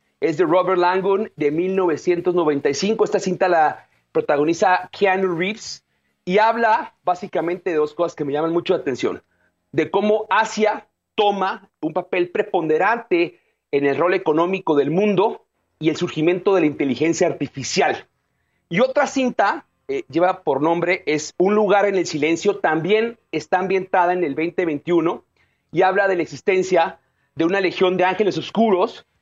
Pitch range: 155-205 Hz